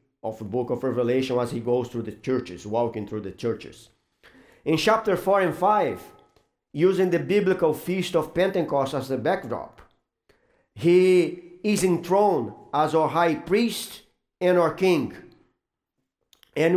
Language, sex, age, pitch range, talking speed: English, male, 50-69, 145-195 Hz, 145 wpm